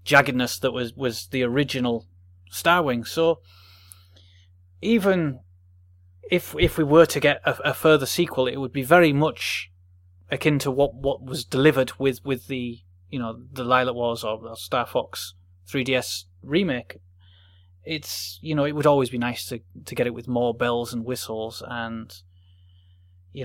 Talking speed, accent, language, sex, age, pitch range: 160 wpm, British, English, male, 30-49, 90-135 Hz